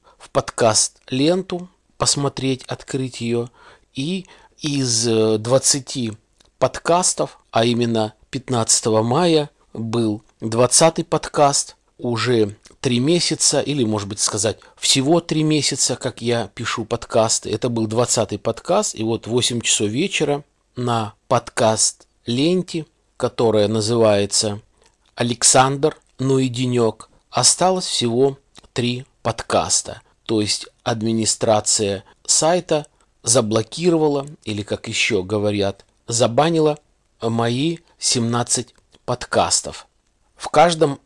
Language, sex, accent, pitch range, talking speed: Russian, male, native, 110-140 Hz, 95 wpm